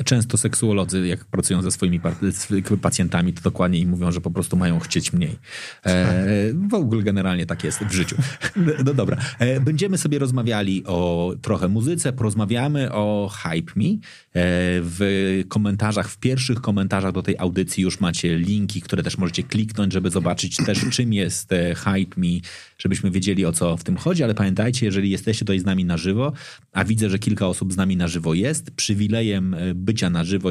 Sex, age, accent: male, 30-49, native